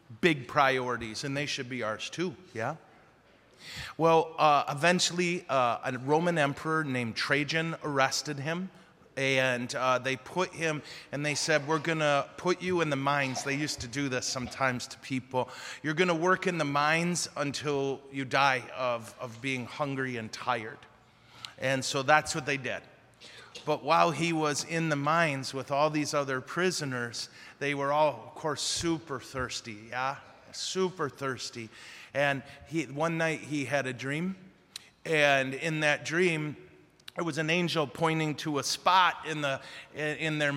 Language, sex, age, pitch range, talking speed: English, male, 30-49, 130-155 Hz, 160 wpm